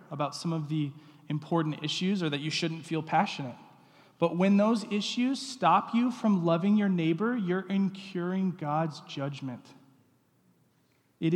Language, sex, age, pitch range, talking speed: English, male, 20-39, 135-175 Hz, 145 wpm